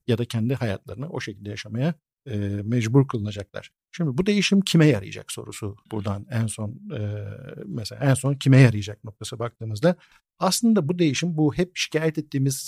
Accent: native